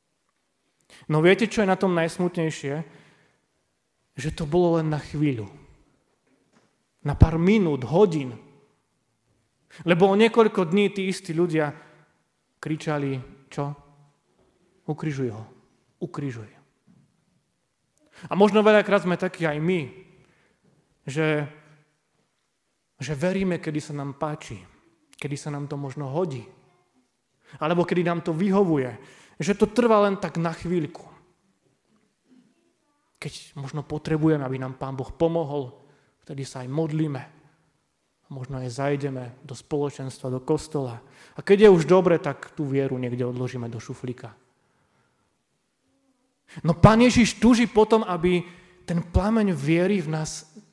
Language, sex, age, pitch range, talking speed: Slovak, male, 30-49, 140-190 Hz, 120 wpm